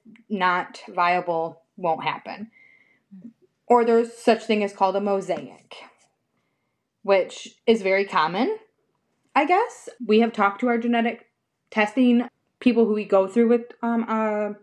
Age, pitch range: 20-39, 190-230 Hz